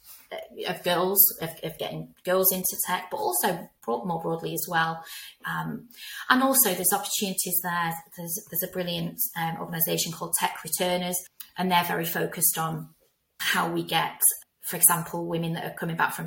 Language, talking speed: English, 170 wpm